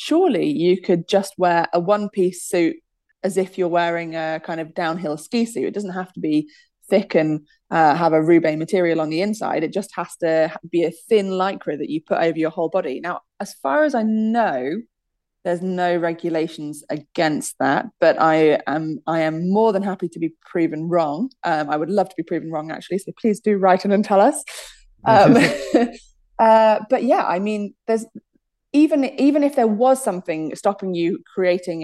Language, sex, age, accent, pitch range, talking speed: English, female, 20-39, British, 160-195 Hz, 195 wpm